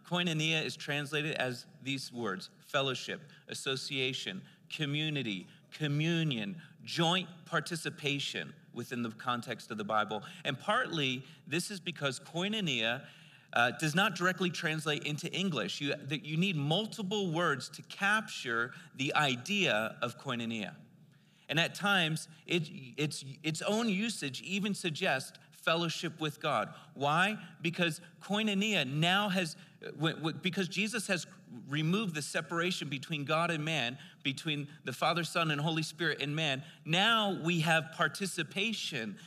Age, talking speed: 40-59, 130 wpm